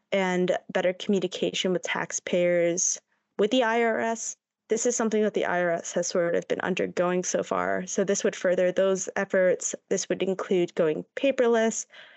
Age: 20-39